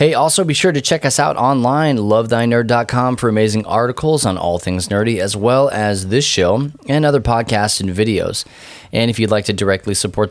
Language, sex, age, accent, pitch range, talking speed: English, male, 20-39, American, 95-125 Hz, 200 wpm